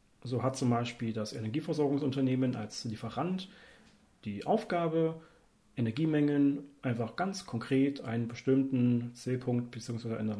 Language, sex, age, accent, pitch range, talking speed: German, male, 40-59, German, 115-145 Hz, 110 wpm